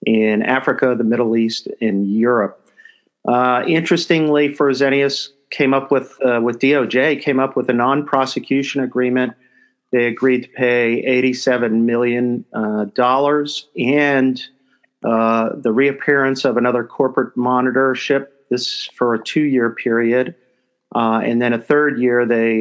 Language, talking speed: English, 130 wpm